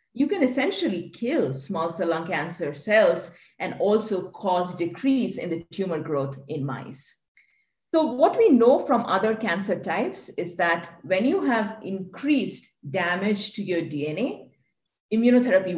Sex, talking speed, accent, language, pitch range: female, 145 wpm, Indian, English, 170-250 Hz